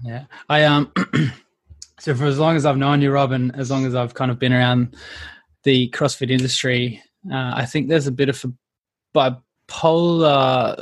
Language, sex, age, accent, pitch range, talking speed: English, male, 20-39, Australian, 125-140 Hz, 170 wpm